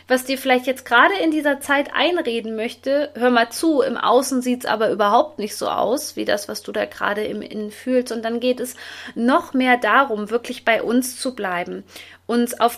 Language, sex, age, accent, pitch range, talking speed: German, female, 20-39, German, 225-260 Hz, 210 wpm